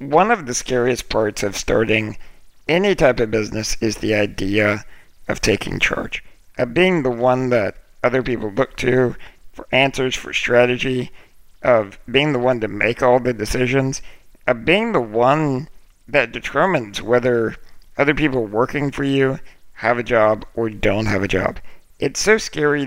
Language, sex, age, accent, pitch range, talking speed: English, male, 50-69, American, 115-150 Hz, 165 wpm